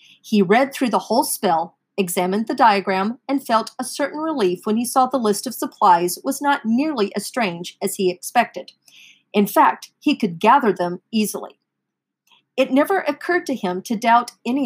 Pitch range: 190-260 Hz